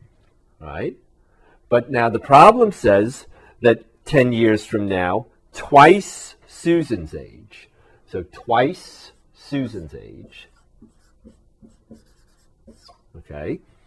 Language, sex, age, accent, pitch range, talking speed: English, male, 50-69, American, 95-125 Hz, 80 wpm